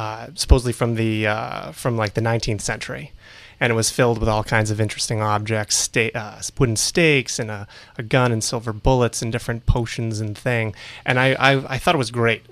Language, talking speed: English, 215 wpm